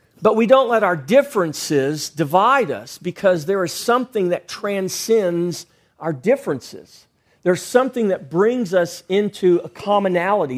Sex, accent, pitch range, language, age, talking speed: male, American, 170-225 Hz, English, 40-59, 135 wpm